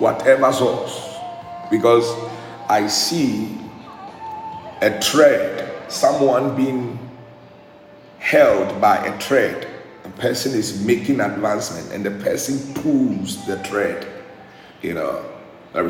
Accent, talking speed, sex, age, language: Nigerian, 100 wpm, male, 50-69, English